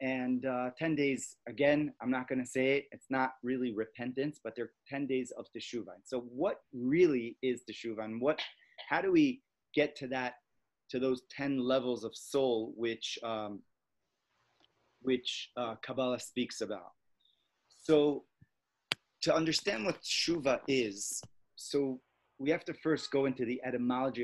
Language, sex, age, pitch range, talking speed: English, male, 30-49, 115-135 Hz, 150 wpm